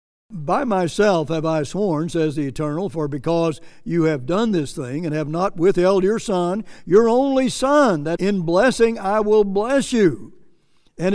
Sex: male